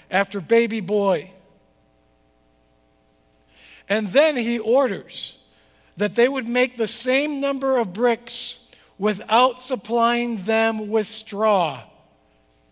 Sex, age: male, 50-69